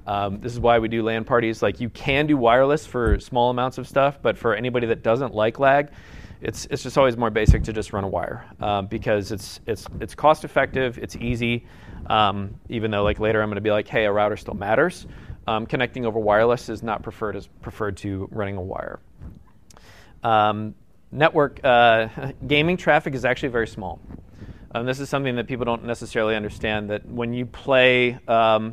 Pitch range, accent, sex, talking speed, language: 105-125 Hz, American, male, 200 wpm, English